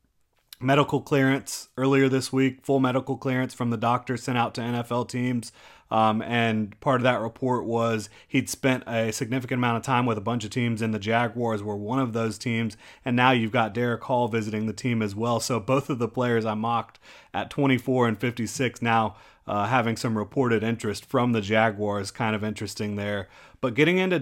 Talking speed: 200 wpm